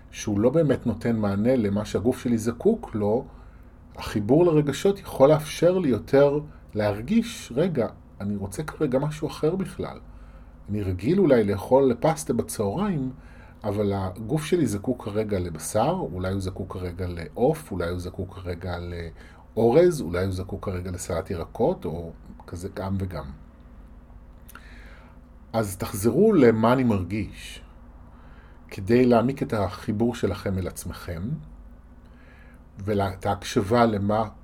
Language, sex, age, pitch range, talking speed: Hebrew, male, 30-49, 80-120 Hz, 125 wpm